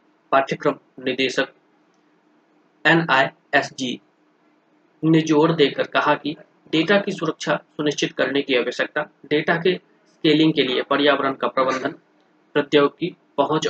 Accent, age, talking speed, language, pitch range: native, 20-39, 115 wpm, Hindi, 140-160 Hz